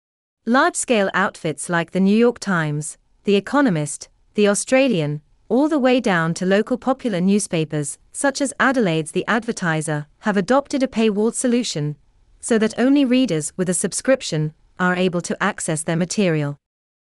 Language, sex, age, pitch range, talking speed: English, female, 30-49, 155-230 Hz, 150 wpm